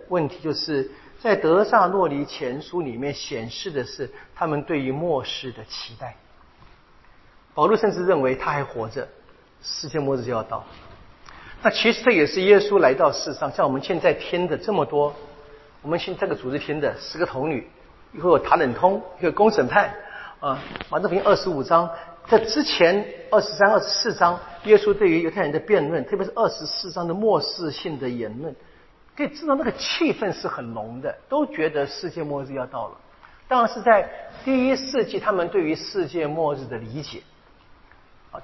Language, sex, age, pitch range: Chinese, male, 50-69, 150-220 Hz